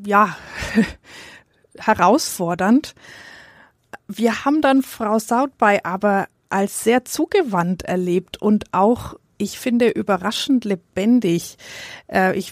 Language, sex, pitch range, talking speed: German, female, 195-250 Hz, 90 wpm